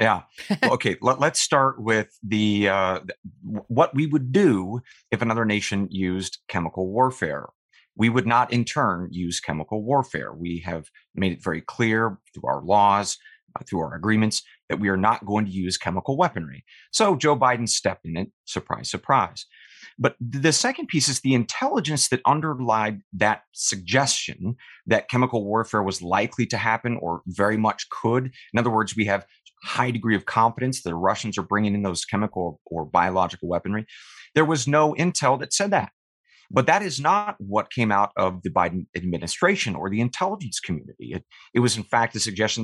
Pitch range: 100-135 Hz